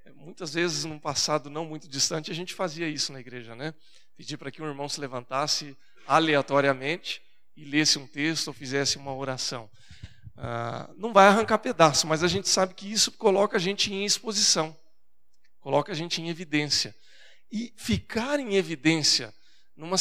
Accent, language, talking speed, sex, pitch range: Brazilian, Portuguese, 170 wpm, male, 135-175 Hz